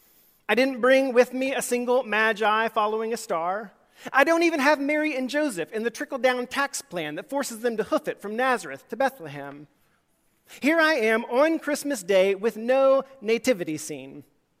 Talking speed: 175 wpm